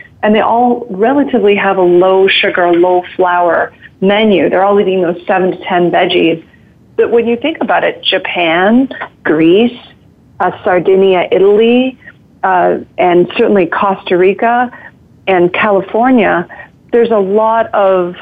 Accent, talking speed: American, 130 wpm